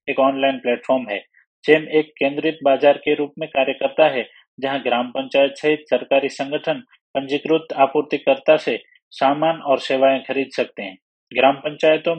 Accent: native